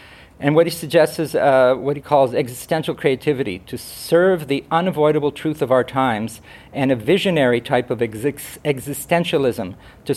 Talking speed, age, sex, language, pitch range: 160 wpm, 50-69, male, English, 120-145 Hz